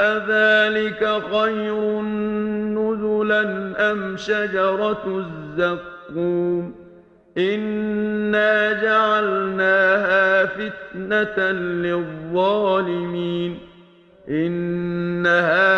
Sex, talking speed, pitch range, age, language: male, 40 wpm, 180-215 Hz, 50-69, English